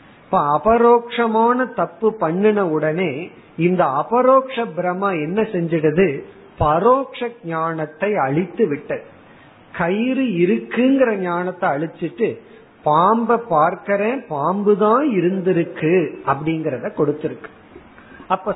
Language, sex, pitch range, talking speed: Tamil, male, 165-225 Hz, 75 wpm